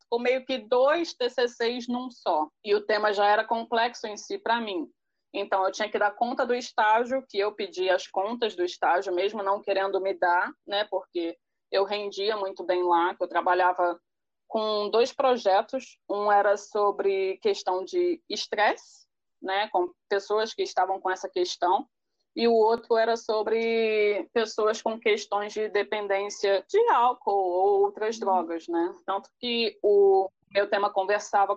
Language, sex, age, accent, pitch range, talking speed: Portuguese, female, 20-39, Brazilian, 195-240 Hz, 165 wpm